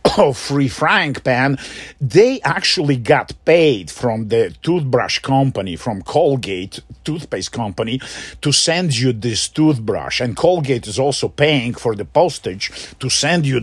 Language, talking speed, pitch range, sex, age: English, 140 wpm, 120-195 Hz, male, 50-69